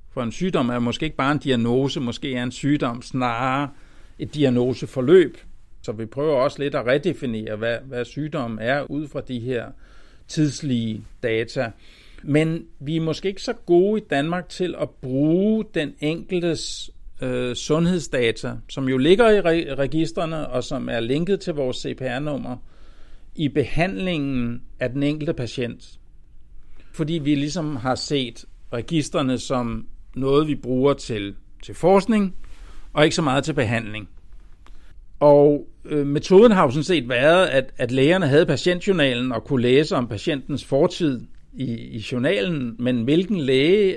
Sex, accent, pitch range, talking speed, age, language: male, native, 120-155 Hz, 150 wpm, 60-79, Danish